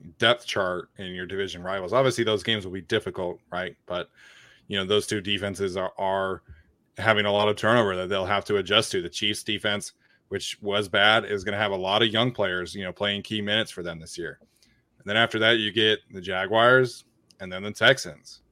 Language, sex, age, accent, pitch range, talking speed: English, male, 20-39, American, 95-110 Hz, 220 wpm